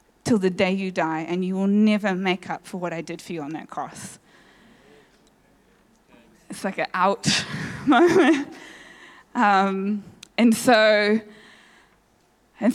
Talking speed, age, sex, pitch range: 135 wpm, 20-39, female, 180-210 Hz